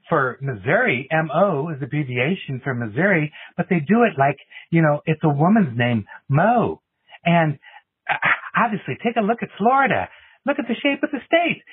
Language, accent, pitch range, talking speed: English, American, 150-225 Hz, 170 wpm